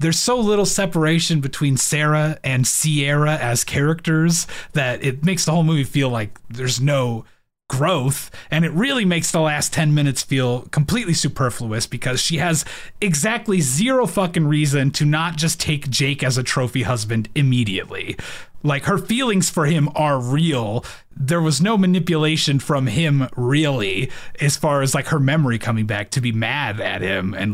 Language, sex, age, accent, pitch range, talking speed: English, male, 30-49, American, 125-165 Hz, 170 wpm